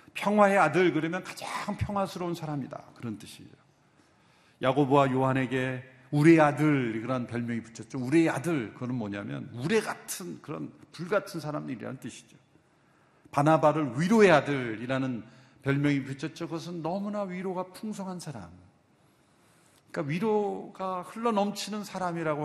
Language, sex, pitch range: Korean, male, 135-200 Hz